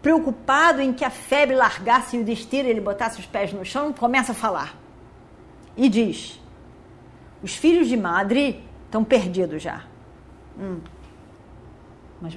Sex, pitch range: female, 195-285 Hz